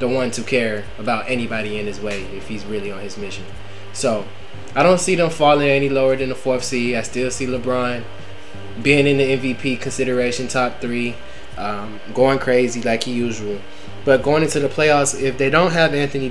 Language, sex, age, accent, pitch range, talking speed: English, male, 20-39, American, 110-135 Hz, 200 wpm